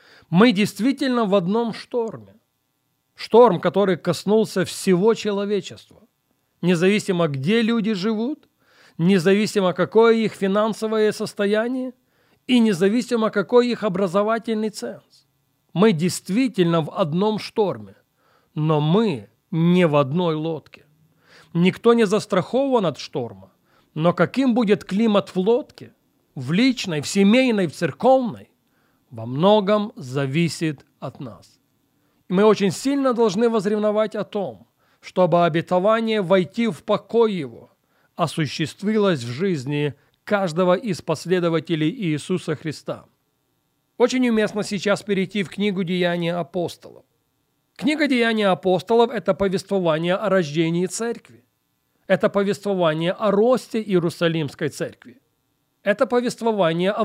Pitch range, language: 170-220 Hz, Russian